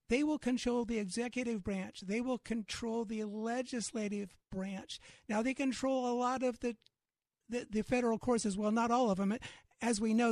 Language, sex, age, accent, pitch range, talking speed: English, male, 50-69, American, 205-245 Hz, 180 wpm